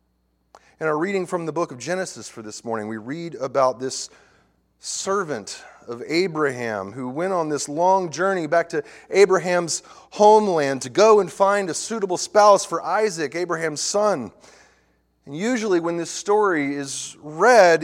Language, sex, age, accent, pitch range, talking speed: English, male, 30-49, American, 115-175 Hz, 155 wpm